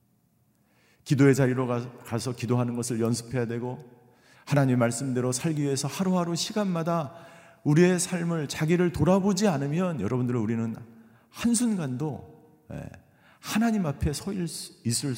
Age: 50-69